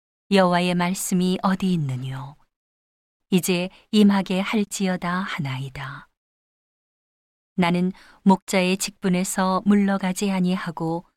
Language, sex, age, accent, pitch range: Korean, female, 40-59, native, 165-195 Hz